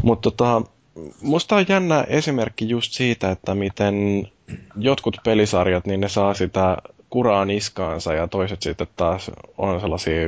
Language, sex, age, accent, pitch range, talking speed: Finnish, male, 20-39, native, 85-100 Hz, 140 wpm